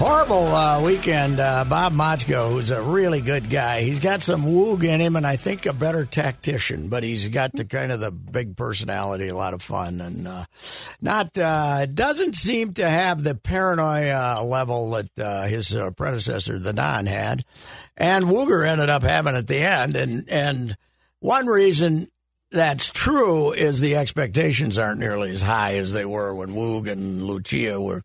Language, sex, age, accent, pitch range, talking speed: English, male, 60-79, American, 100-150 Hz, 180 wpm